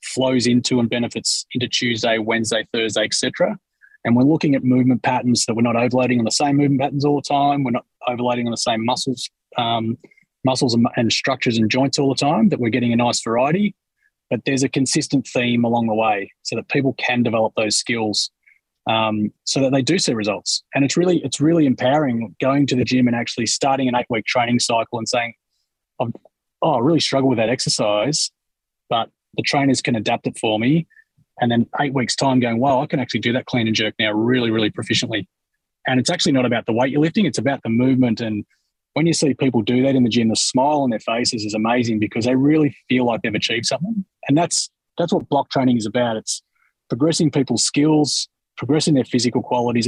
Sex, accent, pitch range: male, Australian, 115-140 Hz